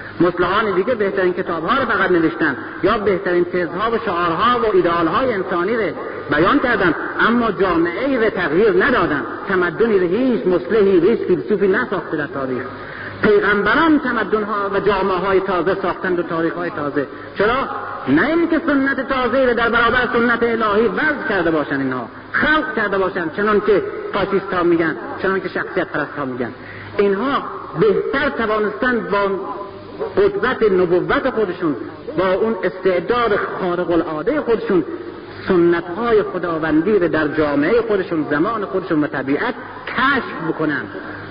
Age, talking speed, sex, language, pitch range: 50-69, 135 wpm, male, Persian, 170-250 Hz